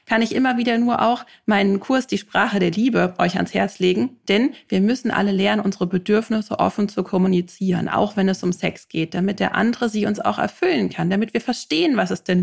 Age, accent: 30-49, German